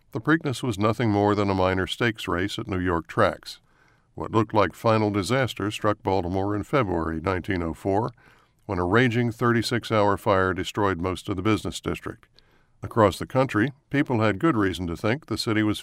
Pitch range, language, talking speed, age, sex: 95-115 Hz, English, 180 wpm, 60-79, male